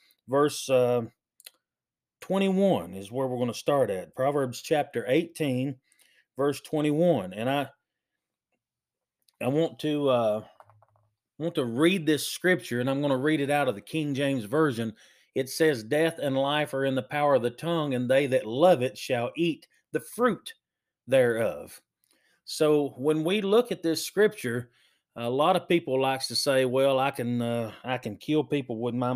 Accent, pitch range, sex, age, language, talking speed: American, 125-160 Hz, male, 40-59, English, 175 wpm